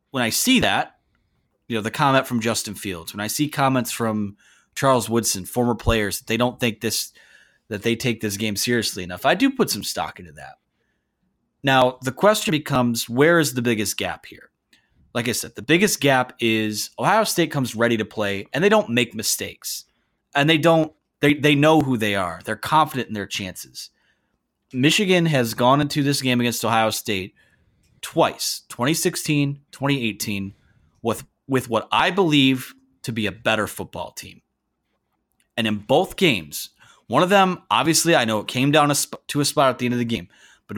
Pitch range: 110-150 Hz